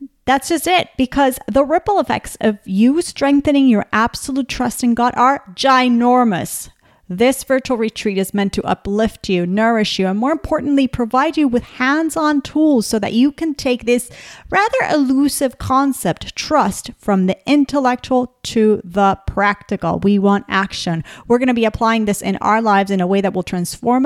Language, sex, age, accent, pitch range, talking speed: English, female, 40-59, American, 185-250 Hz, 170 wpm